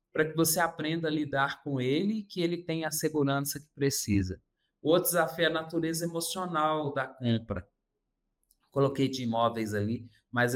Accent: Brazilian